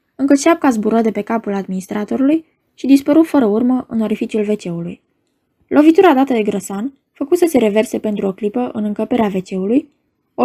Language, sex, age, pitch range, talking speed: Romanian, female, 10-29, 210-270 Hz, 165 wpm